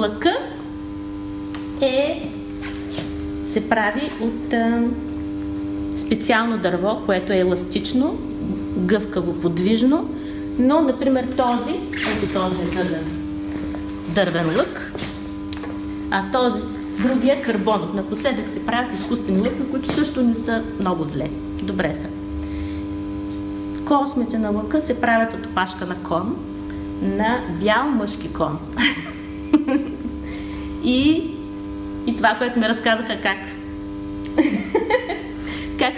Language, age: Bulgarian, 30-49